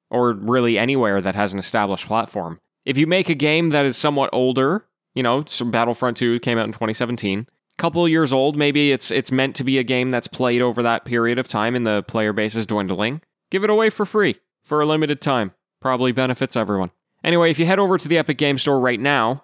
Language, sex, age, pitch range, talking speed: English, male, 20-39, 120-160 Hz, 230 wpm